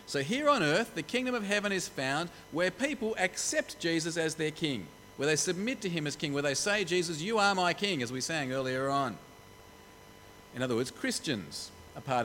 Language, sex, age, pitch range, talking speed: English, male, 40-59, 125-185 Hz, 210 wpm